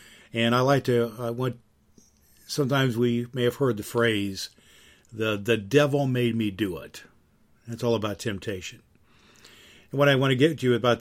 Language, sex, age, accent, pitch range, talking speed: English, male, 50-69, American, 105-130 Hz, 180 wpm